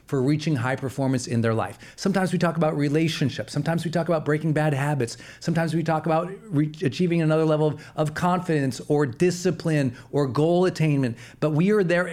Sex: male